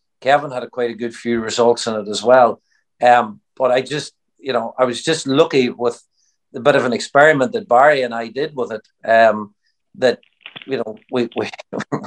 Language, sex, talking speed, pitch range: English, male, 200 wpm, 110-130 Hz